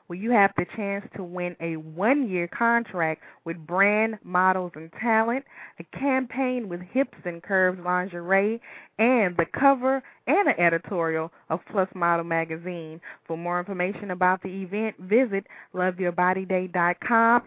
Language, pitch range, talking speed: English, 170-205 Hz, 135 wpm